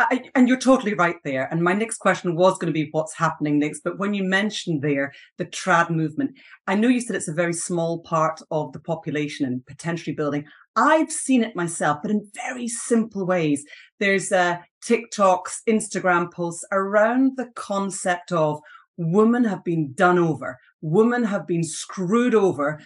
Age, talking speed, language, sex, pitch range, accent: 30-49, 175 wpm, English, female, 165-230 Hz, British